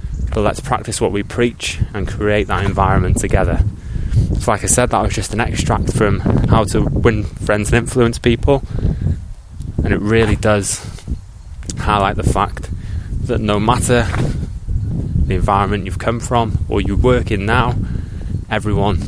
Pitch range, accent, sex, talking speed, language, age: 95-115 Hz, British, male, 155 wpm, English, 20-39